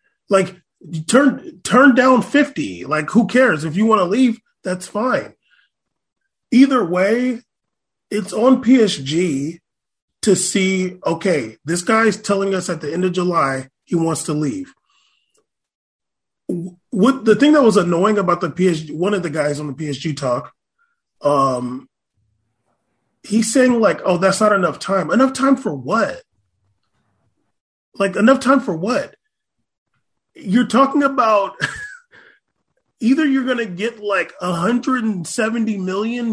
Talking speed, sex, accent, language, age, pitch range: 135 wpm, male, American, English, 30-49, 180-245 Hz